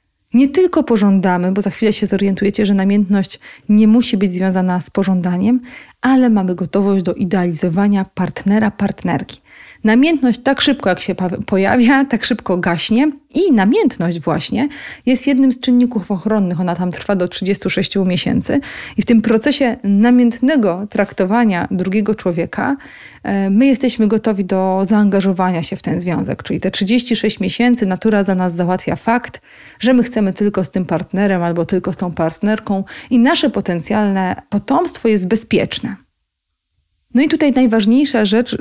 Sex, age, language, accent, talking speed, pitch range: female, 30-49, Polish, native, 150 wpm, 190-235 Hz